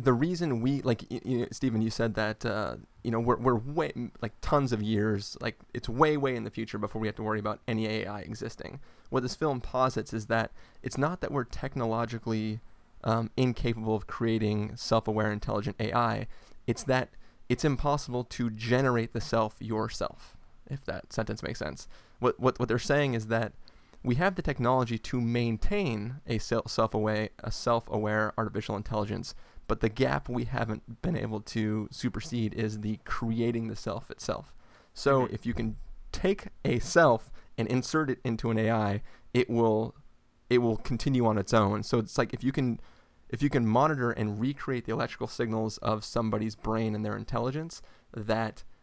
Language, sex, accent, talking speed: English, male, American, 180 wpm